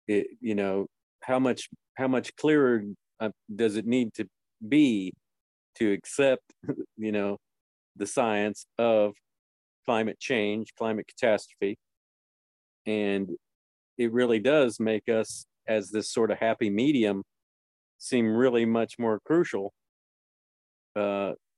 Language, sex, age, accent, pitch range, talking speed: English, male, 50-69, American, 100-110 Hz, 115 wpm